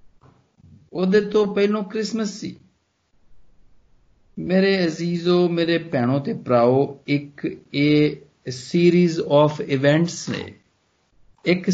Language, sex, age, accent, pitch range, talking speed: Hindi, male, 50-69, native, 135-175 Hz, 75 wpm